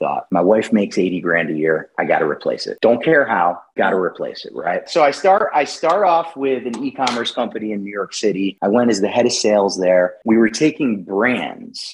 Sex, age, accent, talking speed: male, 30-49, American, 225 wpm